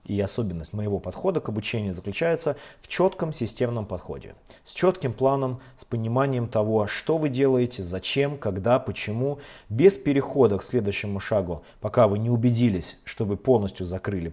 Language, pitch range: Russian, 95-130 Hz